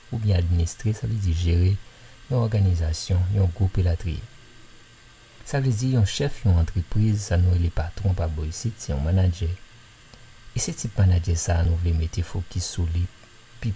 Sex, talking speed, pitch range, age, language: male, 190 wpm, 85-115 Hz, 50-69, French